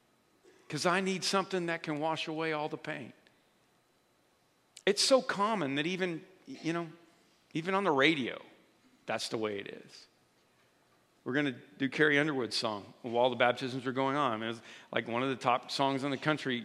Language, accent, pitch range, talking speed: English, American, 135-180 Hz, 180 wpm